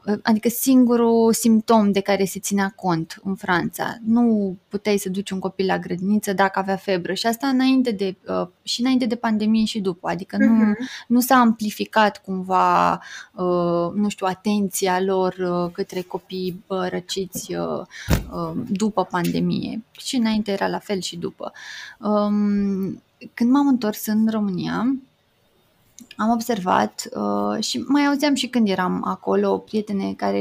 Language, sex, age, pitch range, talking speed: Romanian, female, 20-39, 190-245 Hz, 140 wpm